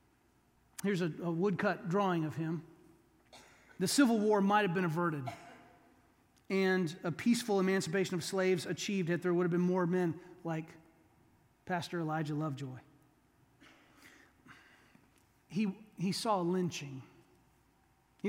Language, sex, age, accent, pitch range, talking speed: English, male, 30-49, American, 170-235 Hz, 125 wpm